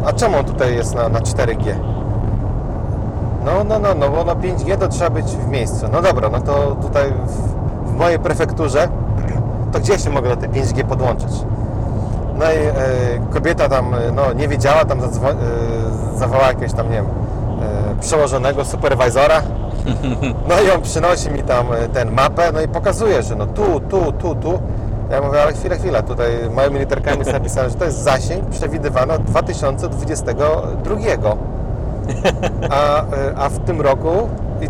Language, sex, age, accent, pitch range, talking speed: Polish, male, 30-49, native, 110-130 Hz, 160 wpm